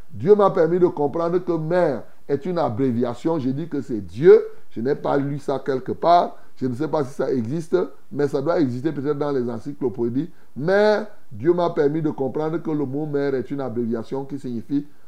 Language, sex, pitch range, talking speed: French, male, 140-190 Hz, 205 wpm